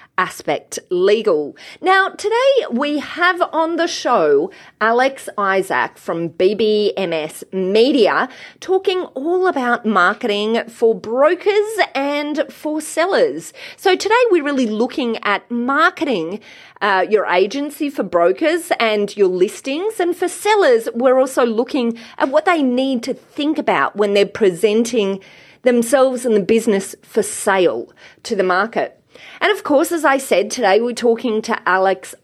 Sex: female